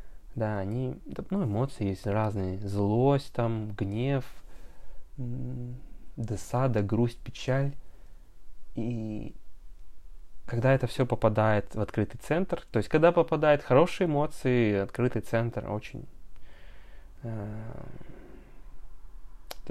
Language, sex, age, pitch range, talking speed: Russian, male, 20-39, 100-125 Hz, 90 wpm